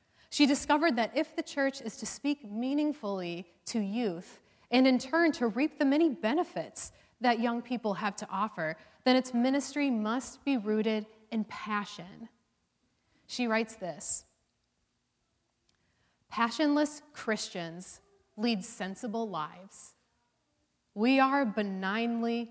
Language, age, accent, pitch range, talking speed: English, 30-49, American, 195-250 Hz, 120 wpm